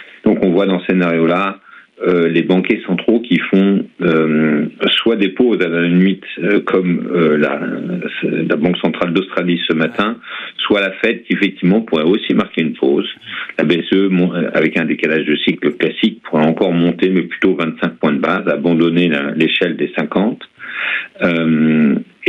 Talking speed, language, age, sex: 170 wpm, French, 50-69, male